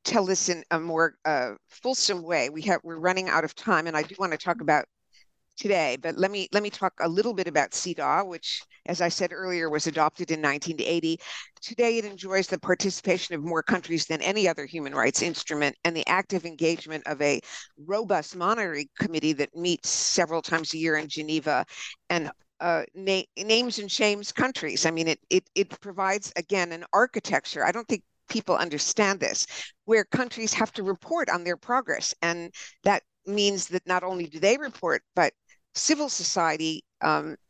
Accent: American